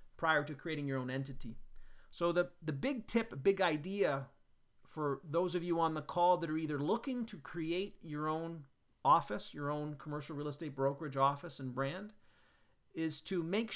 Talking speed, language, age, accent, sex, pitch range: 180 wpm, English, 40-59, American, male, 130-165 Hz